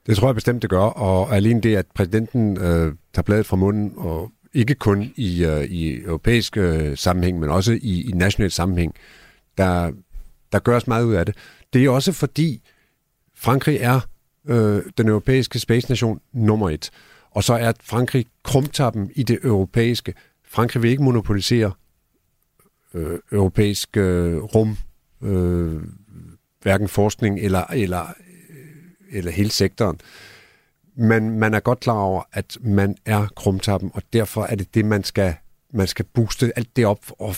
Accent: native